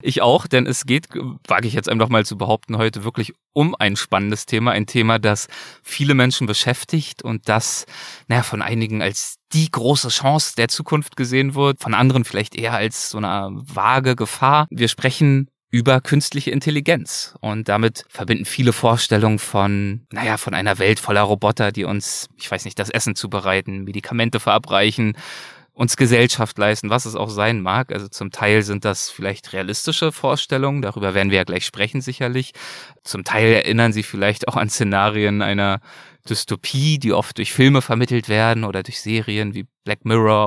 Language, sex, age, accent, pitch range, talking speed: German, male, 20-39, German, 105-130 Hz, 175 wpm